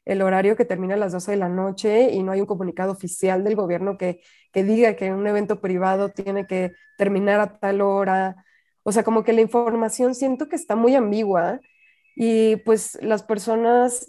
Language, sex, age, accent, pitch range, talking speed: Spanish, female, 20-39, Mexican, 190-230 Hz, 195 wpm